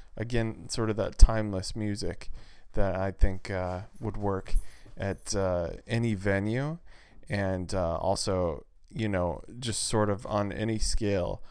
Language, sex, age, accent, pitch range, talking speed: English, male, 20-39, American, 95-110 Hz, 140 wpm